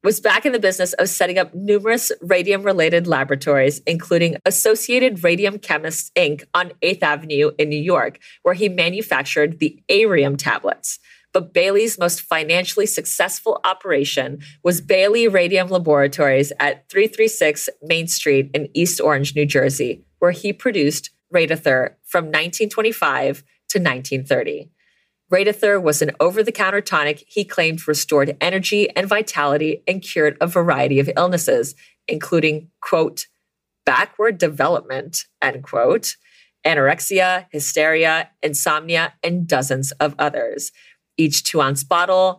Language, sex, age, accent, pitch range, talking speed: English, female, 30-49, American, 150-200 Hz, 125 wpm